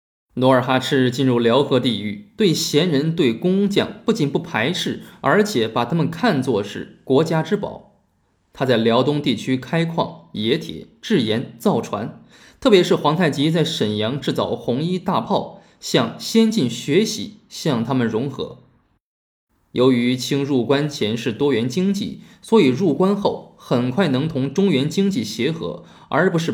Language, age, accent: Chinese, 20-39, native